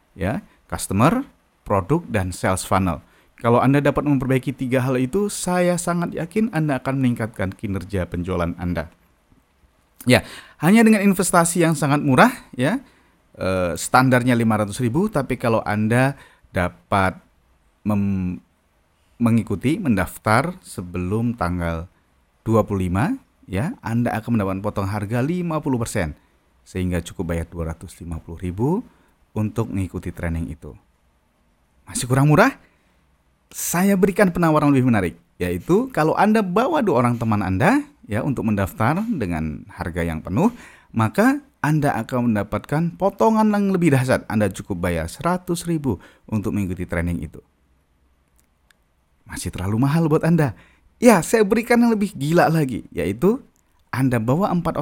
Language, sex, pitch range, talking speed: Indonesian, male, 90-150 Hz, 125 wpm